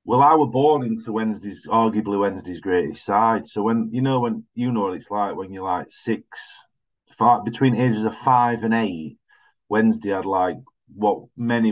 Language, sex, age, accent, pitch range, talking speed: English, male, 40-59, British, 100-120 Hz, 185 wpm